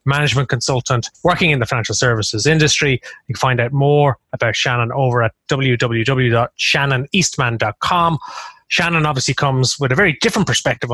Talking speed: 145 wpm